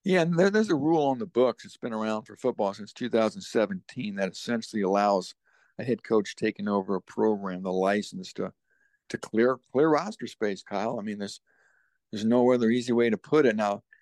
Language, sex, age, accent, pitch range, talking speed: English, male, 60-79, American, 100-130 Hz, 200 wpm